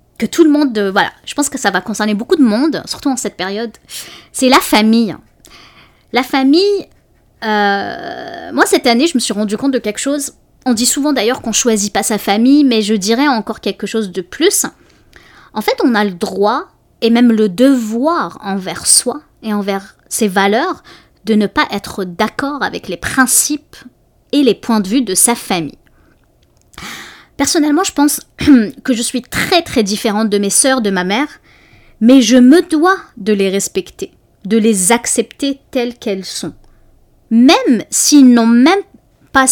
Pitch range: 210-285 Hz